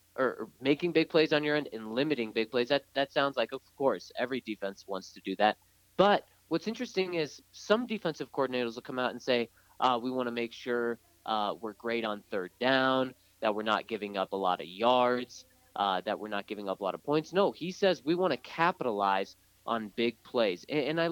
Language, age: English, 30-49